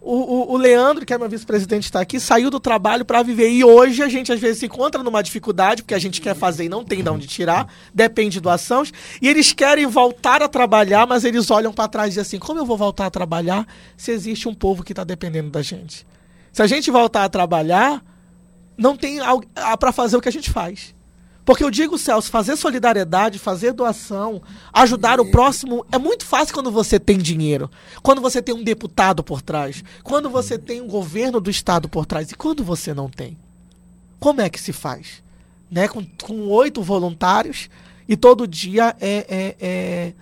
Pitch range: 180-245 Hz